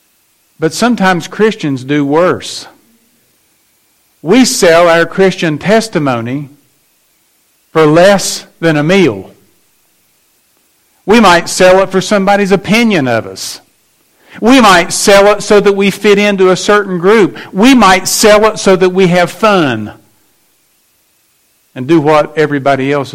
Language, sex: English, male